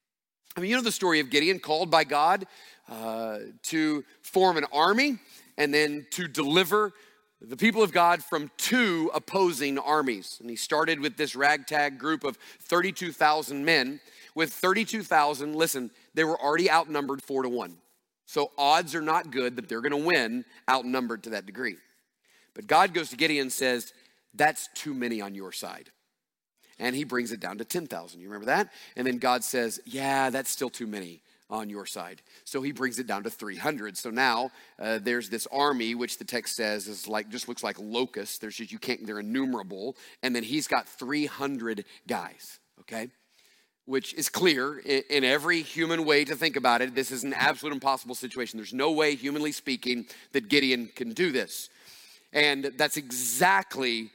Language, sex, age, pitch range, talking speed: English, male, 40-59, 120-155 Hz, 180 wpm